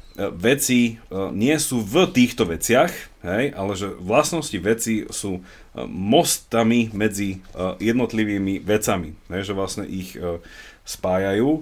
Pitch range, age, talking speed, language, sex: 95-120 Hz, 30-49, 100 wpm, Slovak, male